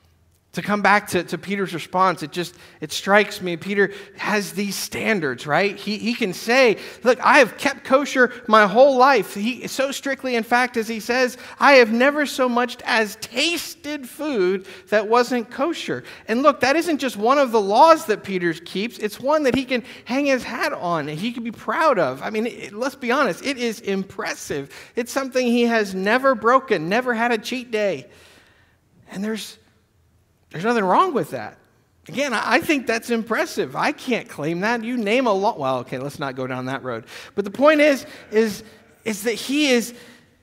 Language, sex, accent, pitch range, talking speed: English, male, American, 180-250 Hz, 195 wpm